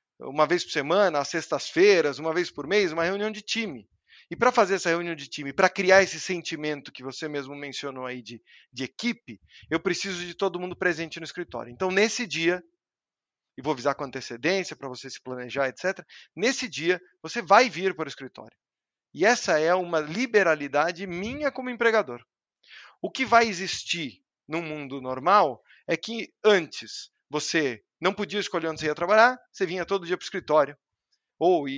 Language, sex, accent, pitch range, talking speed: Portuguese, male, Brazilian, 150-215 Hz, 185 wpm